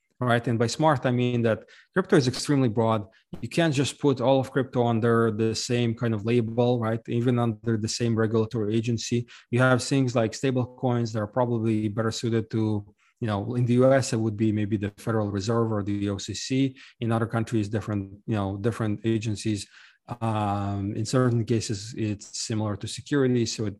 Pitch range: 105-120 Hz